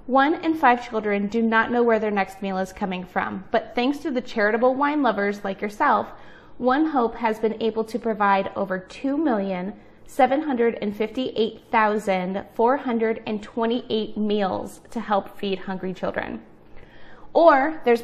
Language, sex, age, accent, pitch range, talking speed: English, female, 20-39, American, 205-255 Hz, 135 wpm